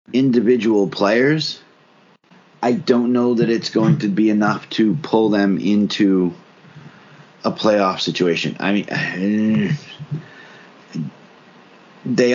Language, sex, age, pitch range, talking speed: English, male, 30-49, 100-125 Hz, 100 wpm